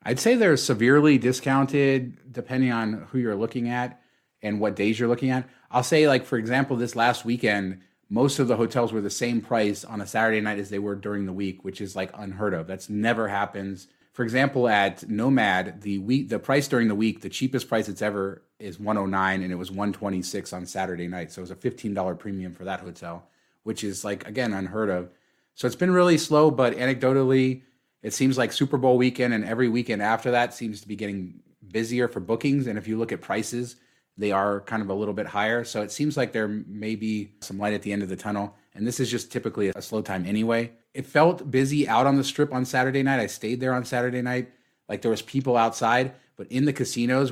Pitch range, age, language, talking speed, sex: 105-125 Hz, 30-49, English, 225 wpm, male